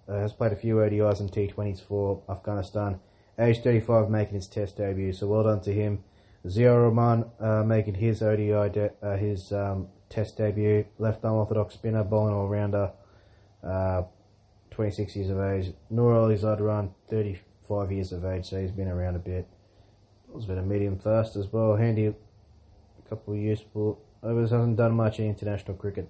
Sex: male